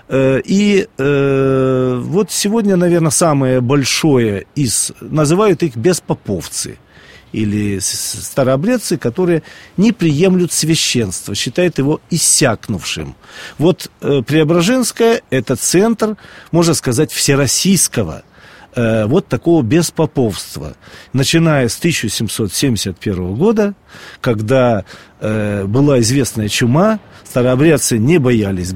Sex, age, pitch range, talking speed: male, 40-59, 125-190 Hz, 90 wpm